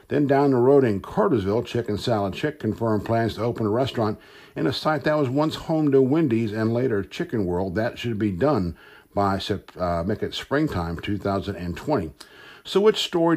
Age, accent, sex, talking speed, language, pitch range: 60-79, American, male, 185 wpm, English, 100-130 Hz